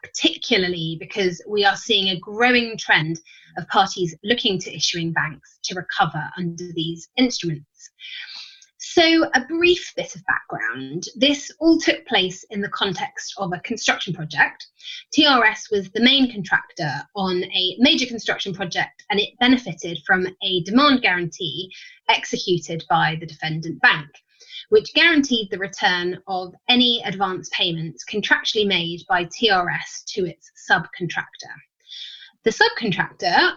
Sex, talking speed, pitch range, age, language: female, 135 wpm, 180-260 Hz, 20-39, English